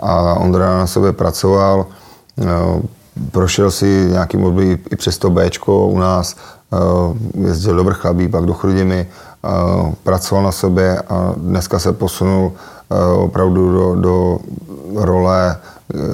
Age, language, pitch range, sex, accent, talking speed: 30-49, Czech, 85-95 Hz, male, native, 120 wpm